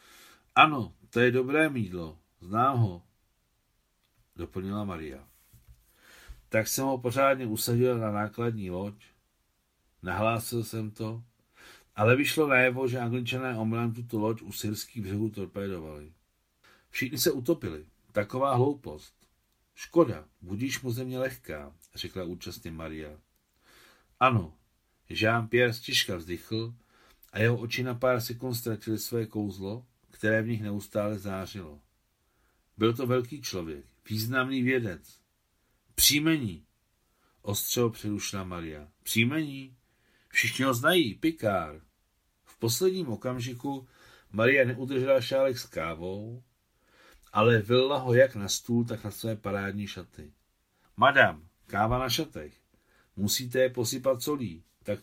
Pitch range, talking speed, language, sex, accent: 100-125 Hz, 115 wpm, Czech, male, native